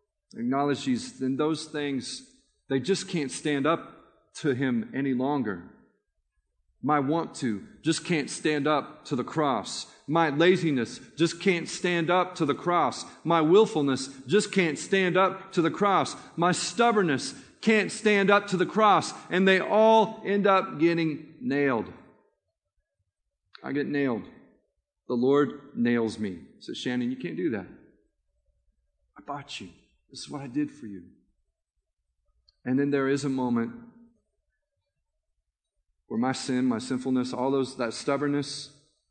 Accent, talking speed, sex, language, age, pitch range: American, 145 wpm, male, English, 40-59, 125-180 Hz